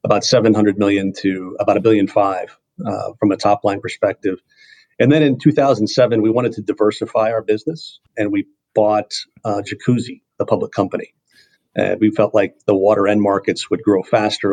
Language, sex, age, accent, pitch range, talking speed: English, male, 40-59, American, 105-120 Hz, 195 wpm